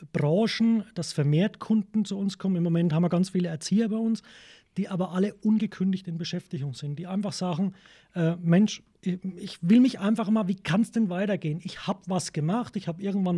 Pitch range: 165-200 Hz